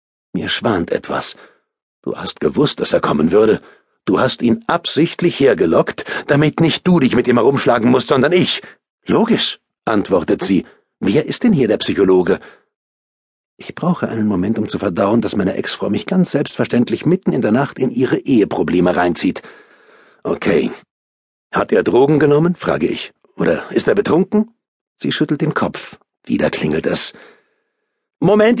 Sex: male